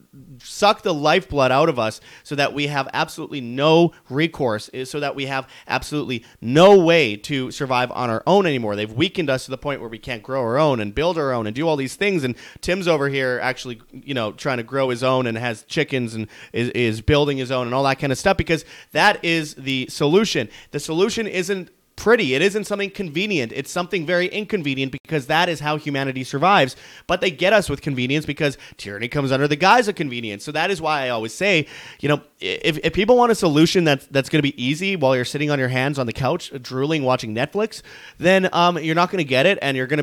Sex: male